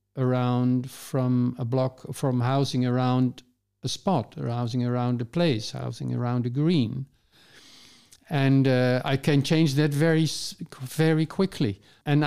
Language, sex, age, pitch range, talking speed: English, male, 50-69, 125-160 Hz, 135 wpm